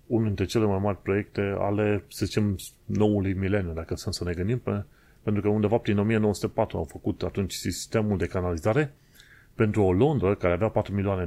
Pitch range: 90-110 Hz